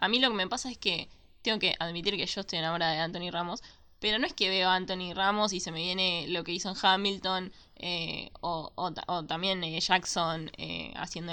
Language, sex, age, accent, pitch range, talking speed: Spanish, female, 10-29, Argentinian, 175-210 Hz, 230 wpm